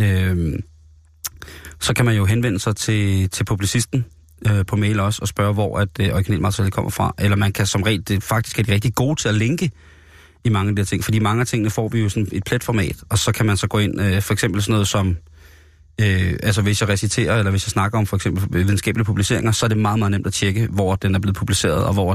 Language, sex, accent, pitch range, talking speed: Danish, male, native, 100-115 Hz, 240 wpm